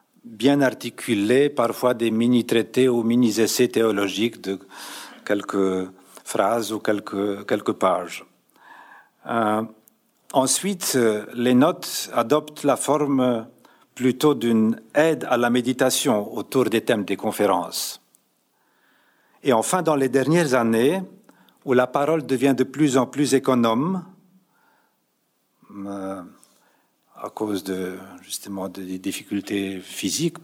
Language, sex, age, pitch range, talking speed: French, male, 50-69, 110-135 Hz, 115 wpm